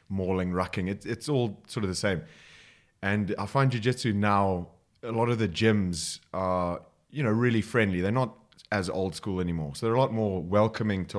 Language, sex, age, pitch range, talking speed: English, male, 30-49, 95-120 Hz, 195 wpm